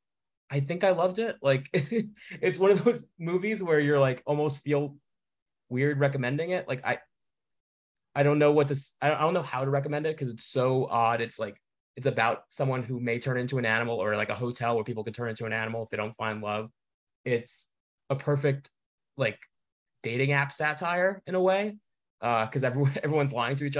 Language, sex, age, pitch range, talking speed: English, male, 20-39, 115-145 Hz, 205 wpm